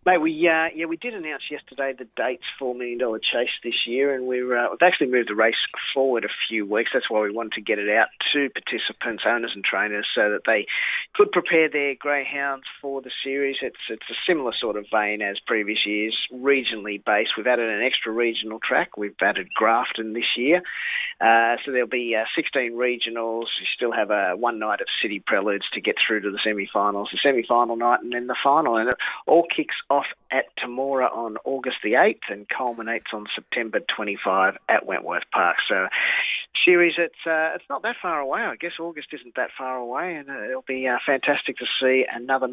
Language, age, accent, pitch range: English, 40-59, Australian, 120-145 Hz